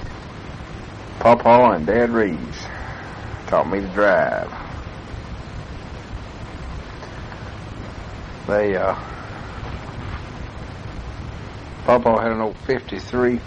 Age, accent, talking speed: 60-79, American, 65 wpm